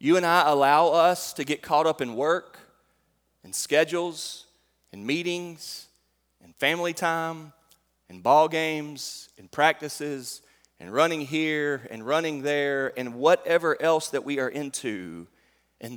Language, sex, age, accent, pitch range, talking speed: English, male, 40-59, American, 110-160 Hz, 140 wpm